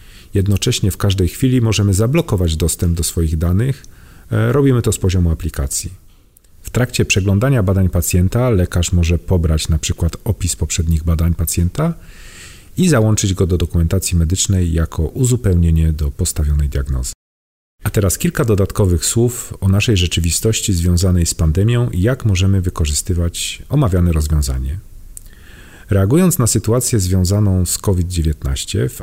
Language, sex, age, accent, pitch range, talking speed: Polish, male, 40-59, native, 85-105 Hz, 130 wpm